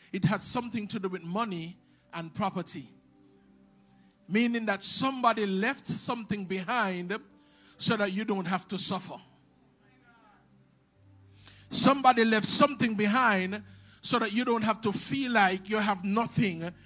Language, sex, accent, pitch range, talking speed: English, male, Nigerian, 190-245 Hz, 130 wpm